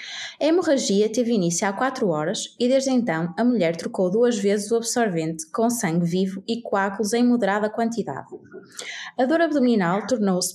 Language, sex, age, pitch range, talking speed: Portuguese, female, 20-39, 195-260 Hz, 165 wpm